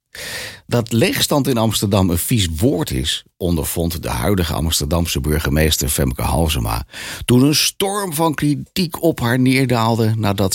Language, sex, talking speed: Dutch, male, 135 wpm